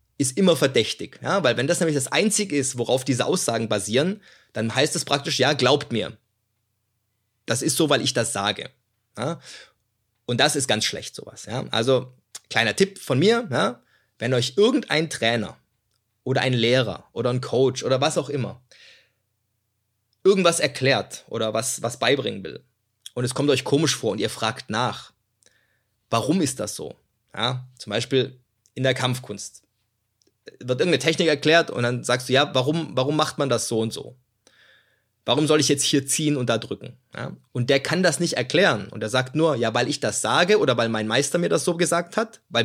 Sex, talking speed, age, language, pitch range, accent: male, 185 wpm, 20-39, German, 115-150 Hz, German